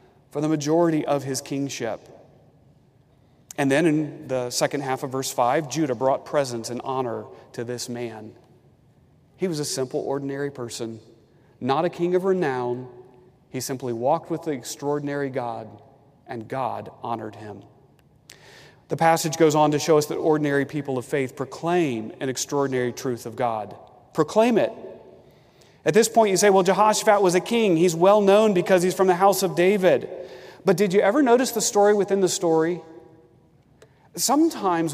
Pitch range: 135-170 Hz